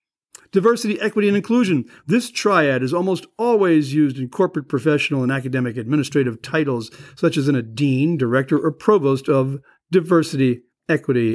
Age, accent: 50-69, American